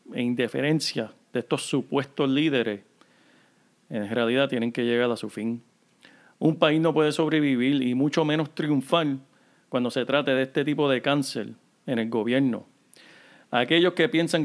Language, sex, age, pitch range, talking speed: Spanish, male, 40-59, 125-155 Hz, 155 wpm